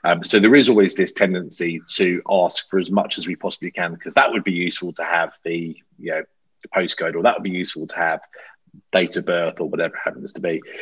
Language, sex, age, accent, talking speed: English, male, 30-49, British, 240 wpm